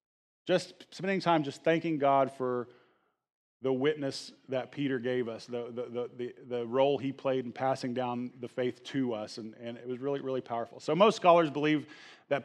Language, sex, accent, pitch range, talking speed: English, male, American, 130-150 Hz, 190 wpm